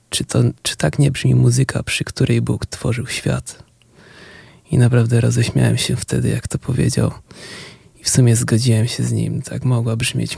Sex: male